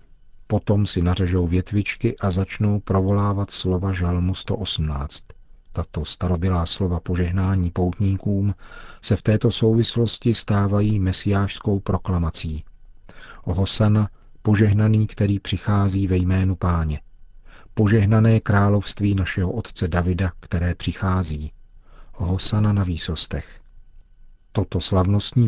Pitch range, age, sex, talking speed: 90-105 Hz, 40-59, male, 95 wpm